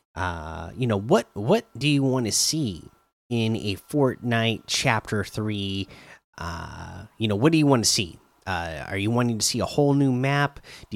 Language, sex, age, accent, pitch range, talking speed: English, male, 30-49, American, 100-140 Hz, 190 wpm